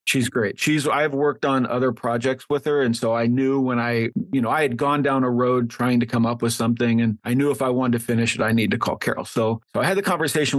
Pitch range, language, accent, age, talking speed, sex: 115-135 Hz, English, American, 40-59, 285 wpm, male